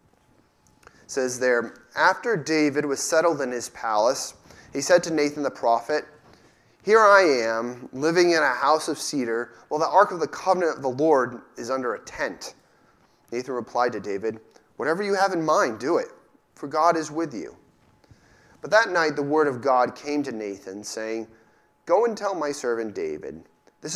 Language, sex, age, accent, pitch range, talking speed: English, male, 30-49, American, 115-150 Hz, 180 wpm